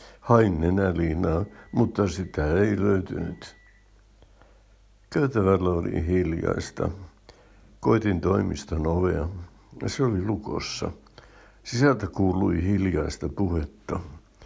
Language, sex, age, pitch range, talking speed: Finnish, male, 60-79, 80-100 Hz, 85 wpm